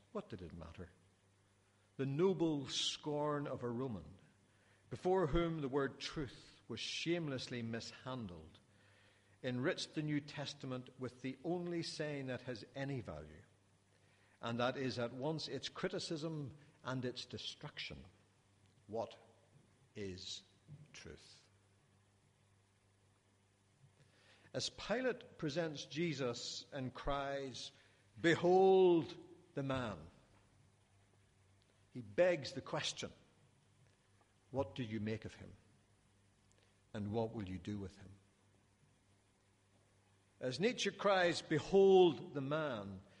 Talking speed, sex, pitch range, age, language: 105 wpm, male, 100-145 Hz, 60-79, English